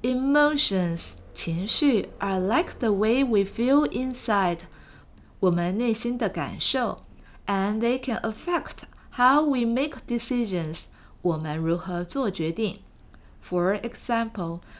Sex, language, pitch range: female, Chinese, 175-240 Hz